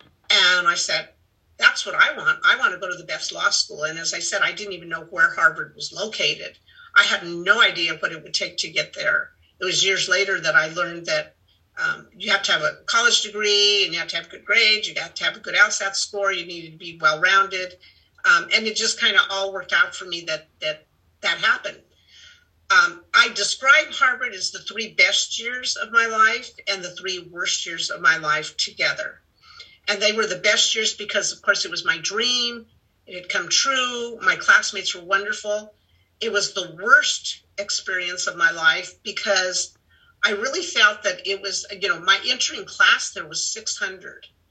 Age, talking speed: 50-69, 210 wpm